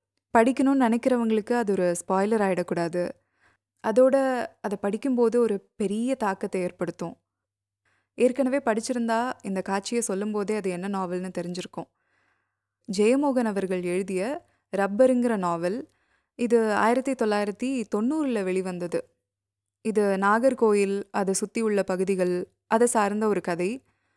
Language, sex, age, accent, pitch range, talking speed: Tamil, female, 20-39, native, 185-240 Hz, 105 wpm